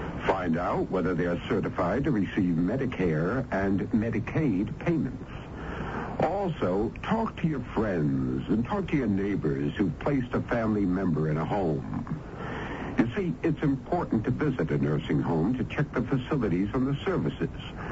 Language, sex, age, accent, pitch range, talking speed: English, male, 70-89, American, 95-140 Hz, 150 wpm